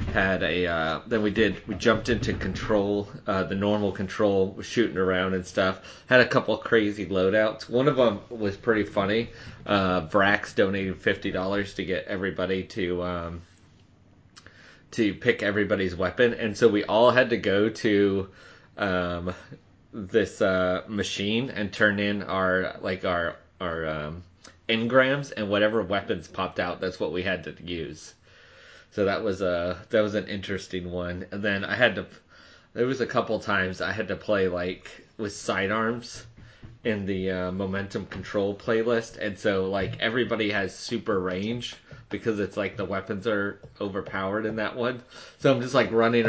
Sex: male